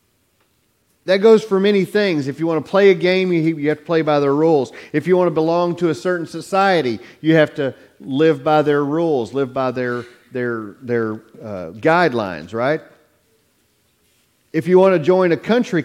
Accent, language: American, English